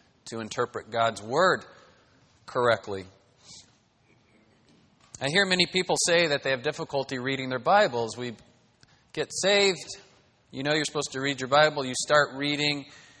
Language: English